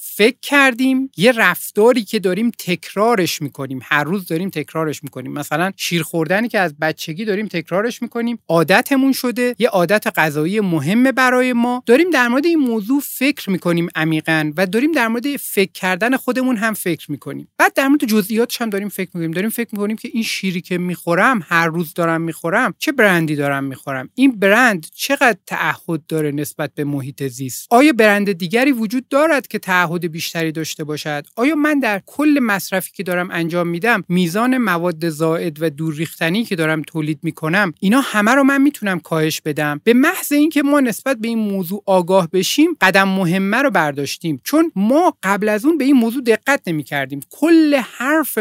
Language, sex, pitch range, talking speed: Persian, male, 160-240 Hz, 180 wpm